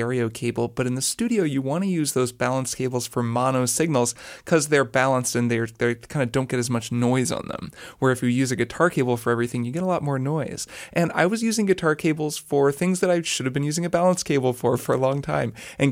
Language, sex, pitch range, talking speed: English, male, 125-155 Hz, 260 wpm